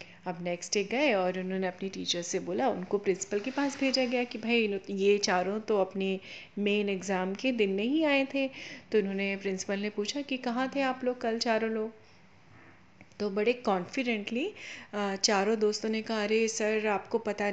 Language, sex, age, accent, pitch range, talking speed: Hindi, female, 30-49, native, 200-230 Hz, 185 wpm